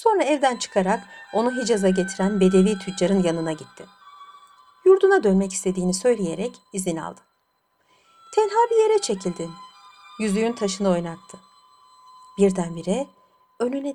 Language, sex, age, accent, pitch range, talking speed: Turkish, female, 60-79, native, 190-260 Hz, 110 wpm